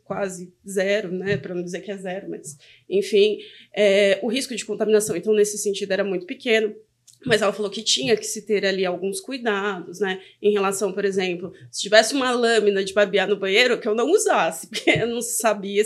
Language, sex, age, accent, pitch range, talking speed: Portuguese, female, 20-39, Brazilian, 200-285 Hz, 205 wpm